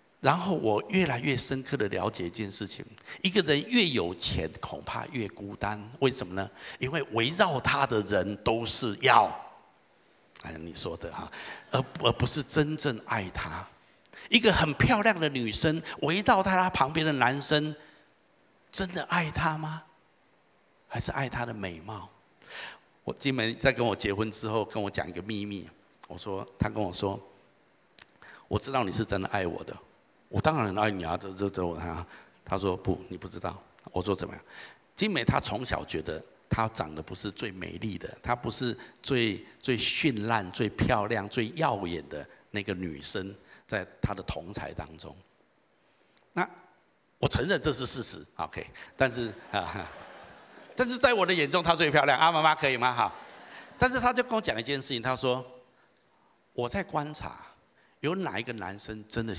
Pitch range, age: 100-150 Hz, 50-69